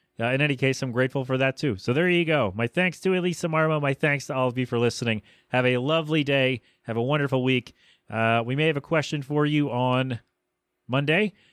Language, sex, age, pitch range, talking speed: English, male, 30-49, 120-155 Hz, 230 wpm